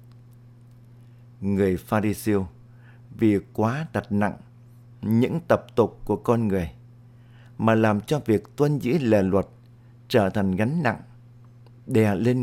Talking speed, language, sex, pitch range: 125 wpm, Vietnamese, male, 110-120 Hz